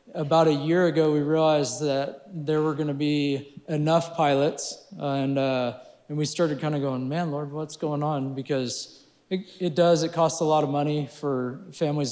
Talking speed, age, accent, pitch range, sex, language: 200 wpm, 20-39, American, 140-155 Hz, male, English